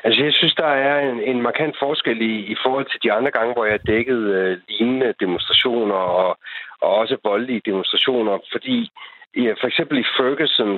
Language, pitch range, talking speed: Danish, 120-155 Hz, 185 wpm